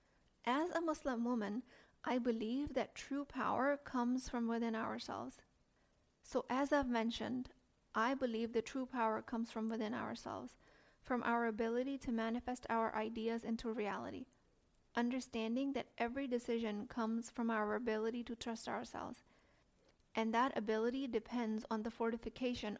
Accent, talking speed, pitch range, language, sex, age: American, 140 wpm, 225-250 Hz, English, female, 40-59